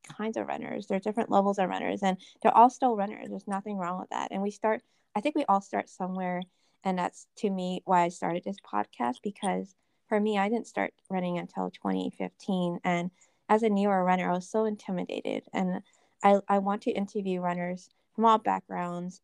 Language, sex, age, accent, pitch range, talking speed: English, female, 20-39, American, 180-210 Hz, 205 wpm